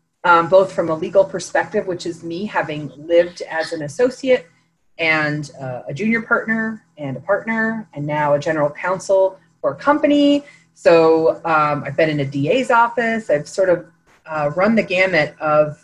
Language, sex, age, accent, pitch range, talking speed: English, female, 30-49, American, 160-200 Hz, 175 wpm